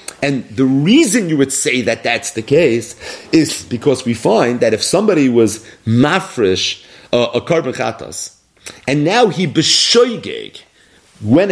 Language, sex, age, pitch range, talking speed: English, male, 40-59, 130-190 Hz, 145 wpm